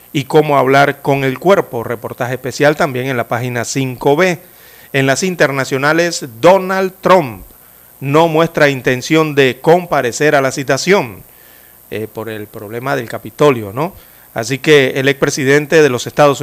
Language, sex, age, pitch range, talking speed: Spanish, male, 40-59, 130-155 Hz, 145 wpm